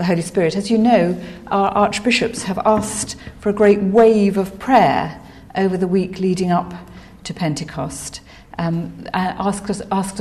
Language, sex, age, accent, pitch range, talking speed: English, female, 50-69, British, 165-220 Hz, 165 wpm